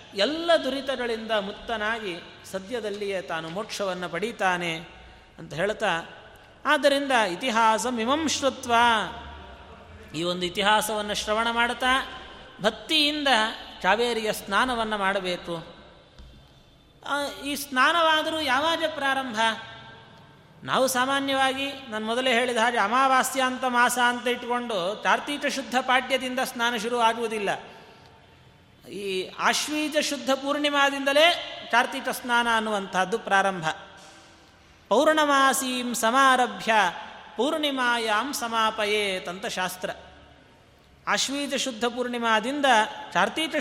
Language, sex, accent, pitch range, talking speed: Kannada, male, native, 205-260 Hz, 80 wpm